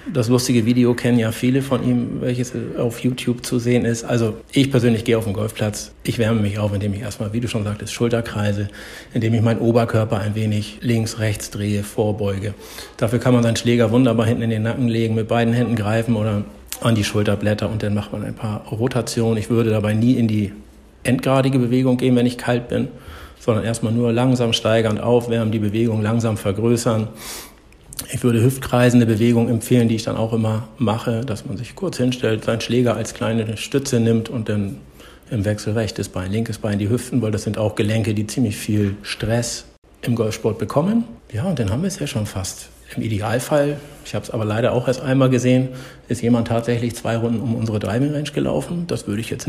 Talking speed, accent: 205 wpm, German